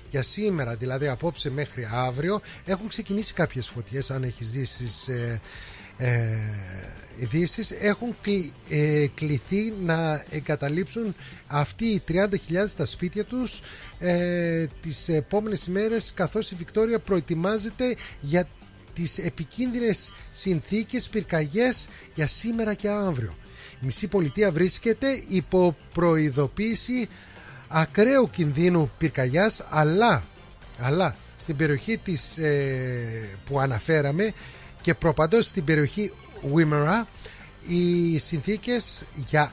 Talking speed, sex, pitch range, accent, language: 110 wpm, male, 145-210 Hz, native, Greek